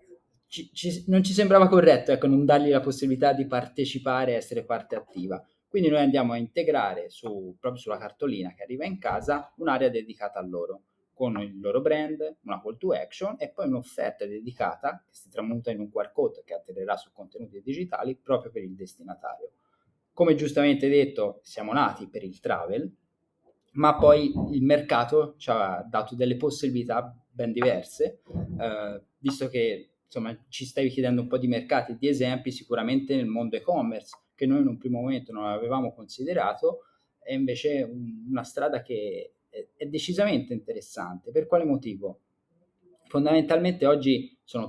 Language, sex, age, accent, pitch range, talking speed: Italian, male, 20-39, native, 120-170 Hz, 160 wpm